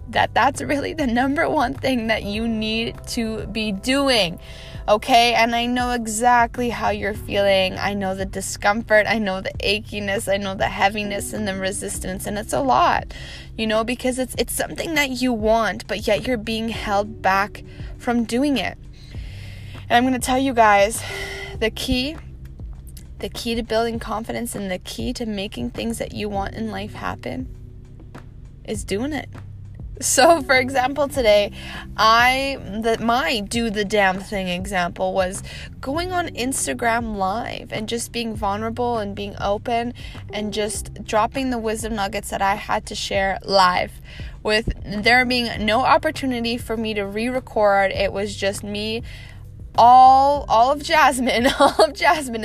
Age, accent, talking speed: 20-39, American, 160 wpm